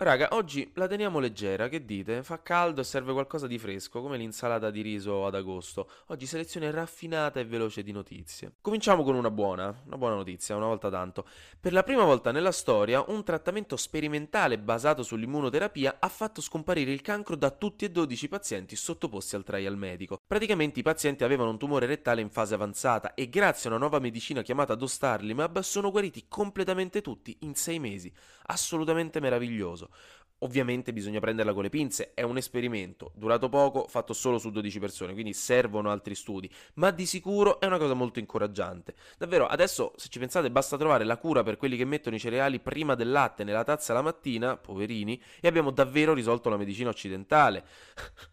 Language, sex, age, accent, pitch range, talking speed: Italian, male, 20-39, native, 105-150 Hz, 185 wpm